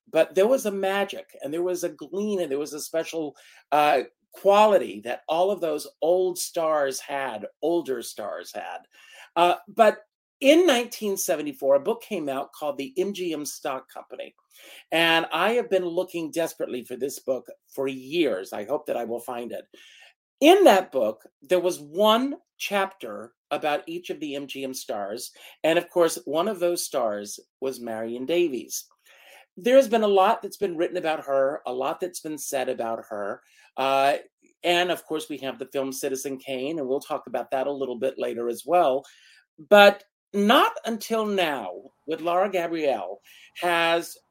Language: English